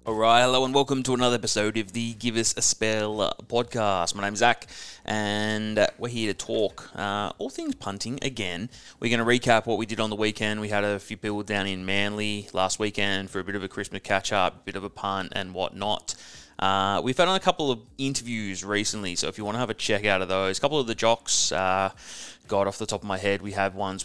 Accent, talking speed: Australian, 240 wpm